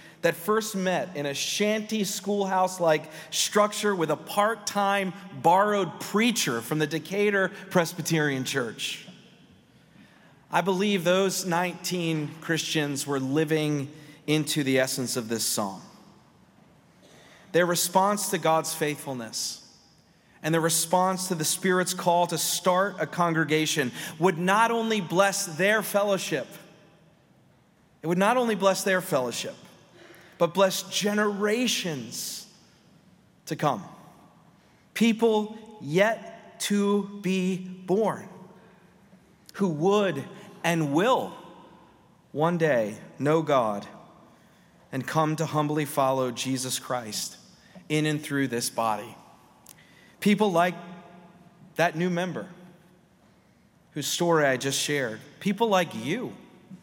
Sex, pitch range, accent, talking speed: male, 155-195 Hz, American, 110 wpm